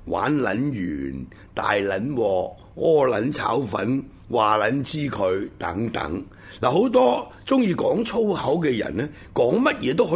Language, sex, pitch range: Chinese, male, 95-135 Hz